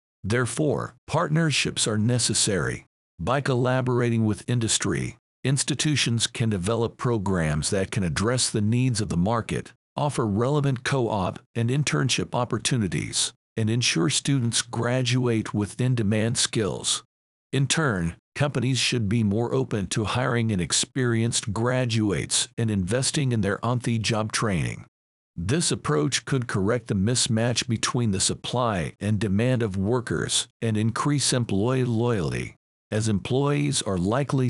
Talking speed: 125 wpm